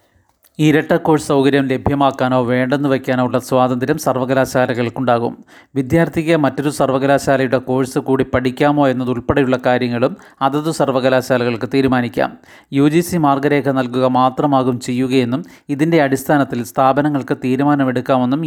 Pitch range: 130-145 Hz